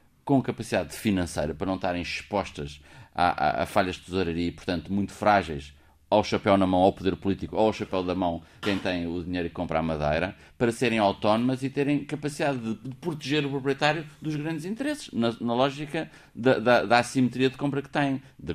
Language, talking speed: Portuguese, 200 wpm